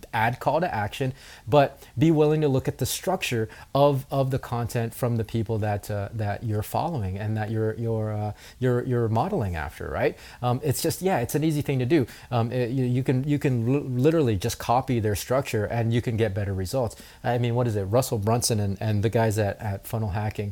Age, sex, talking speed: 30-49, male, 230 wpm